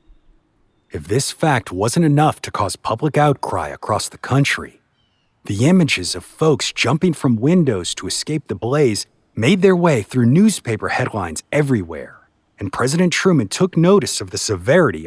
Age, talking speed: 50-69, 150 wpm